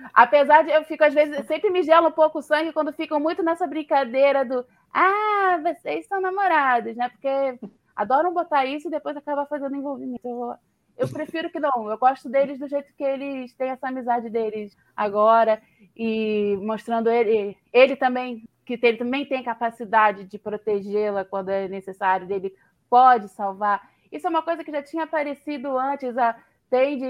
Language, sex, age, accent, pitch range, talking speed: Portuguese, female, 20-39, Brazilian, 225-300 Hz, 175 wpm